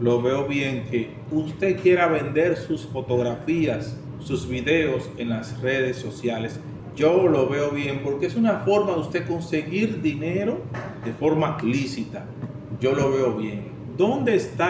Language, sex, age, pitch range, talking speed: Spanish, male, 40-59, 130-175 Hz, 145 wpm